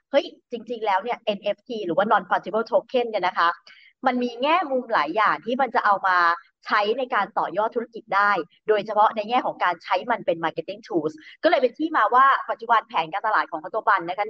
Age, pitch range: 30-49, 175-240 Hz